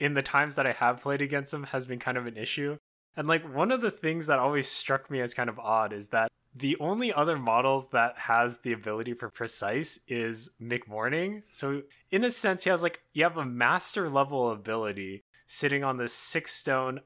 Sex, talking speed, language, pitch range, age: male, 215 wpm, English, 115-135 Hz, 20-39